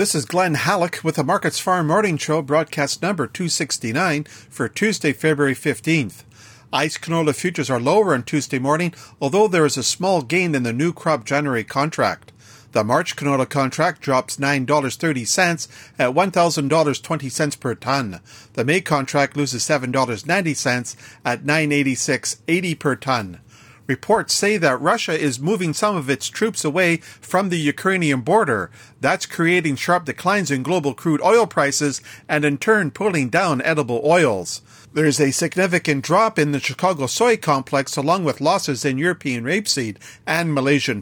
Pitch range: 135-175 Hz